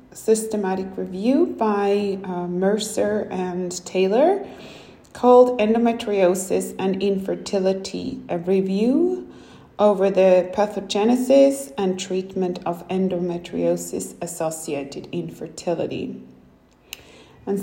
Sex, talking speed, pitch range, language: female, 75 wpm, 180-210 Hz, English